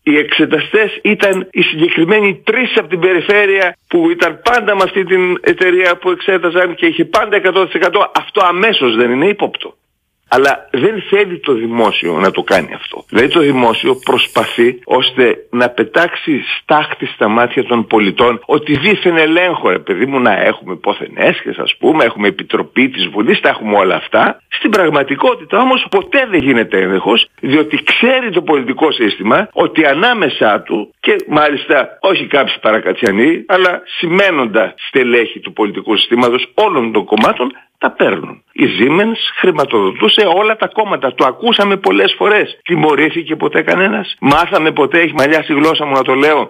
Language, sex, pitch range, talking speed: Greek, male, 155-245 Hz, 155 wpm